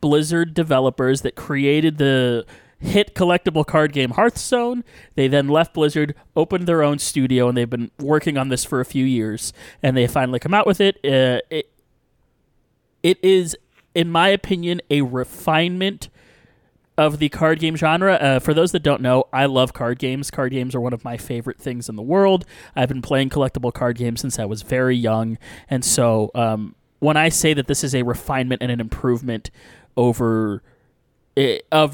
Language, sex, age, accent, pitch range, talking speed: English, male, 30-49, American, 115-150 Hz, 180 wpm